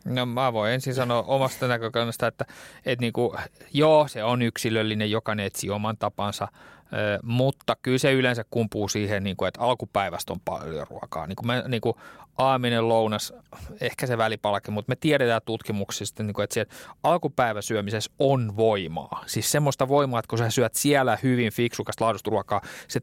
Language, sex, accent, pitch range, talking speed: Finnish, male, native, 105-125 Hz, 150 wpm